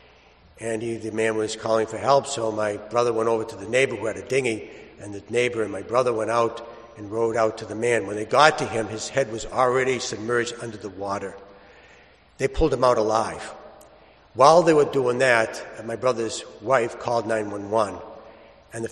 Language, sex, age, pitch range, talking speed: English, male, 60-79, 110-140 Hz, 200 wpm